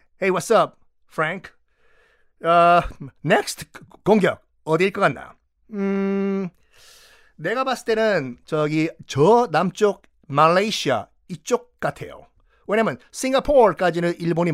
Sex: male